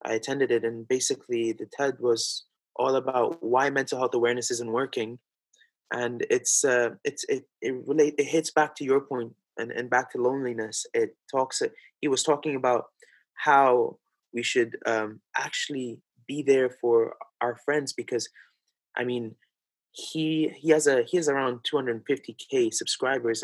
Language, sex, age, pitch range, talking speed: English, male, 20-39, 125-180 Hz, 170 wpm